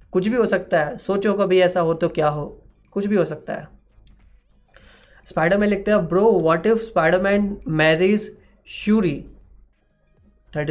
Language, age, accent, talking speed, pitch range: Hindi, 20-39, native, 155 wpm, 155-195 Hz